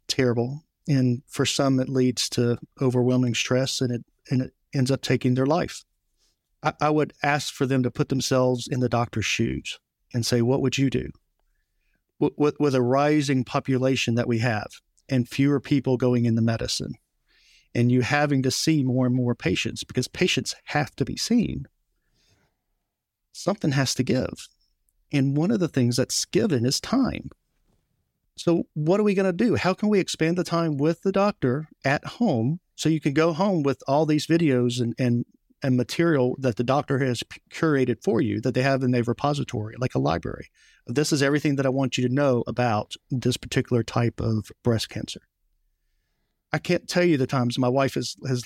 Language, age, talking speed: English, 50-69, 190 wpm